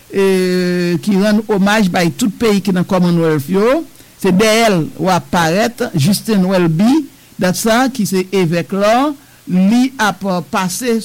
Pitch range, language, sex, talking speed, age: 180-225 Hz, English, male, 115 wpm, 60-79